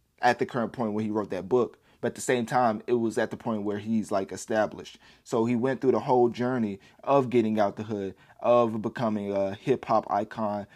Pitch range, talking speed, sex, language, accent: 110-125 Hz, 225 wpm, male, English, American